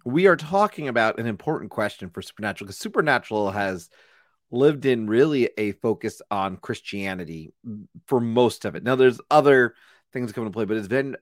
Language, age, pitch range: English, 30-49, 100-140 Hz